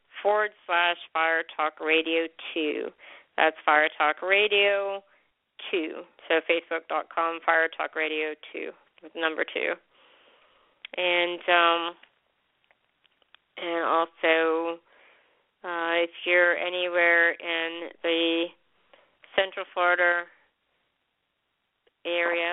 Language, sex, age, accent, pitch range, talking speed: English, female, 40-59, American, 165-180 Hz, 95 wpm